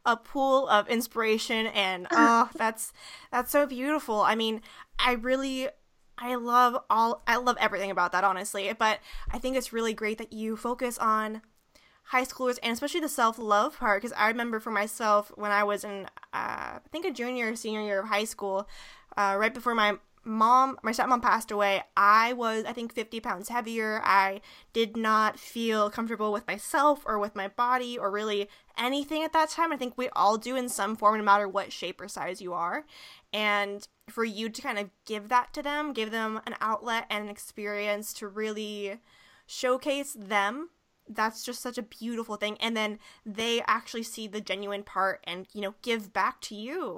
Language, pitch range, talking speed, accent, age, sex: English, 205-245 Hz, 195 wpm, American, 20-39, female